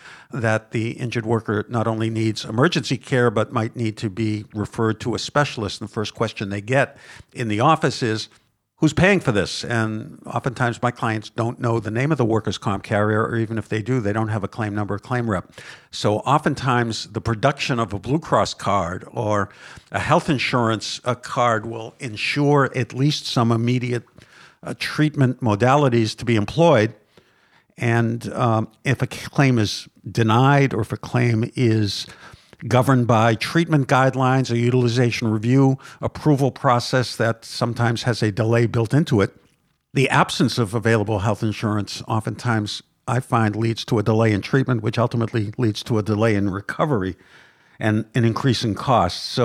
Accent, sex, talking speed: American, male, 170 wpm